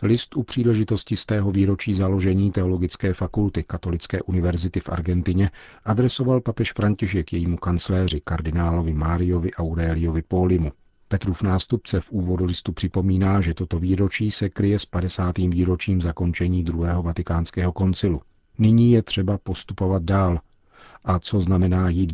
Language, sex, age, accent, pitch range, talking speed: Czech, male, 50-69, native, 90-100 Hz, 135 wpm